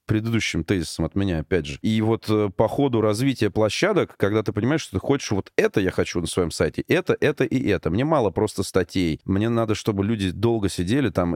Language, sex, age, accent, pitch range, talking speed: Russian, male, 30-49, native, 85-120 Hz, 215 wpm